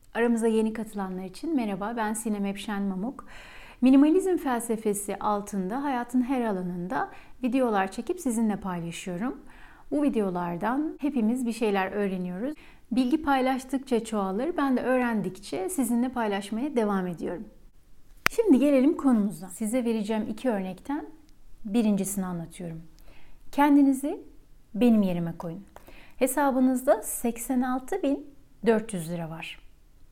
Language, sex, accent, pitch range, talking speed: Turkish, female, native, 200-275 Hz, 105 wpm